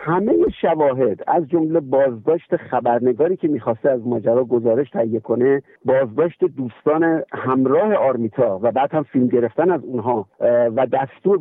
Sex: male